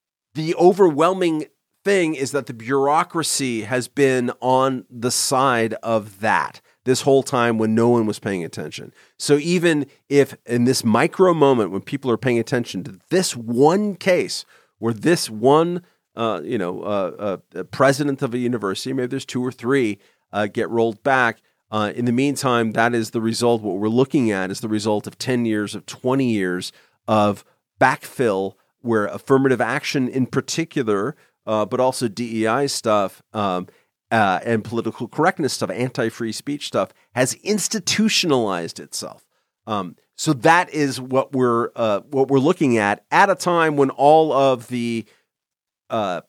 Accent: American